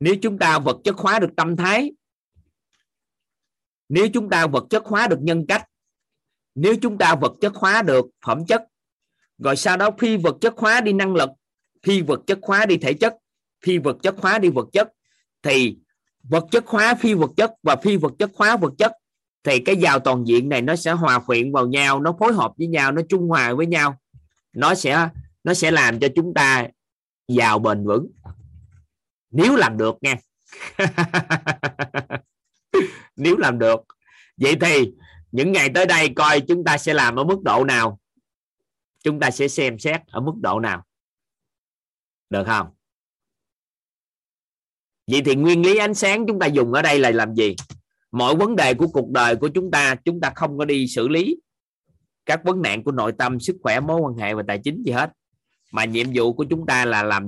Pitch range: 130-195 Hz